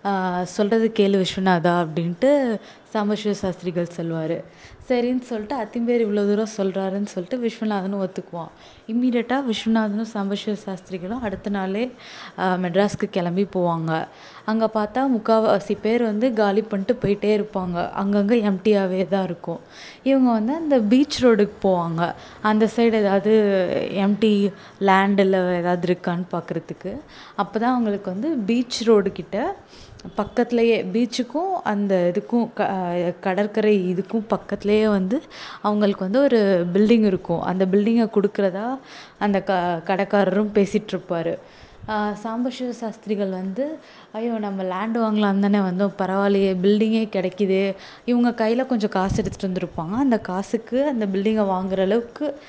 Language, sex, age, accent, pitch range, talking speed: Tamil, female, 20-39, native, 190-225 Hz, 120 wpm